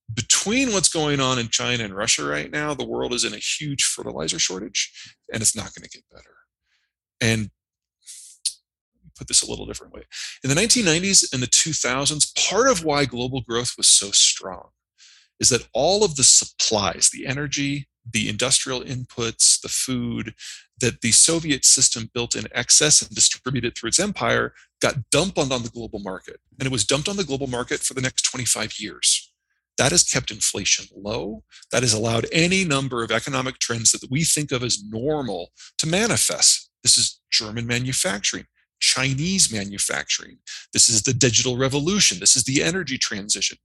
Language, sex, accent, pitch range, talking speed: English, male, American, 115-145 Hz, 175 wpm